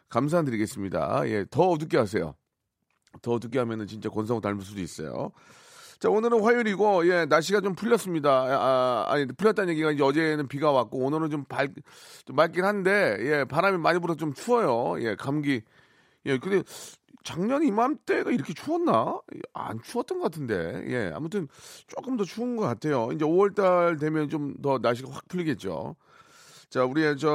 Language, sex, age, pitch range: Korean, male, 30-49, 125-175 Hz